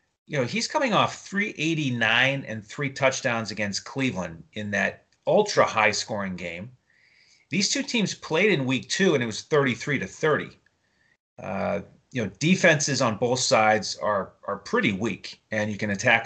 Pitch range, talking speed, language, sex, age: 110-140 Hz, 165 wpm, English, male, 30-49